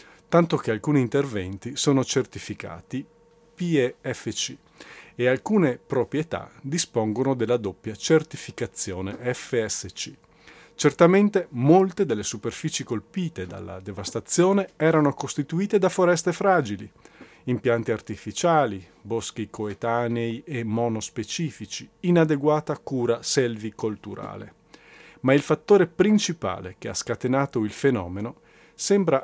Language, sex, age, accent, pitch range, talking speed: Italian, male, 40-59, native, 110-160 Hz, 95 wpm